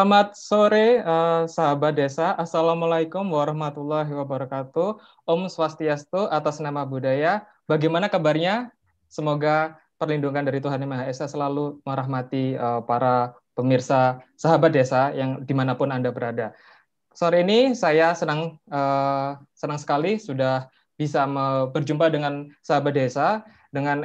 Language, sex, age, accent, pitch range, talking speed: Indonesian, male, 20-39, native, 135-165 Hz, 115 wpm